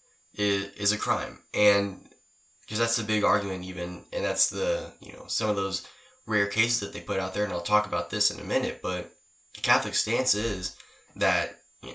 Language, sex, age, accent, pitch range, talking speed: English, male, 10-29, American, 90-105 Hz, 200 wpm